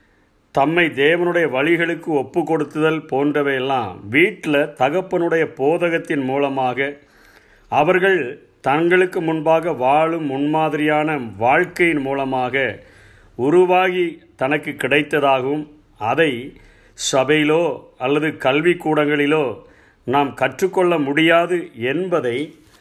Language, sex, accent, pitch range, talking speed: Tamil, male, native, 130-160 Hz, 75 wpm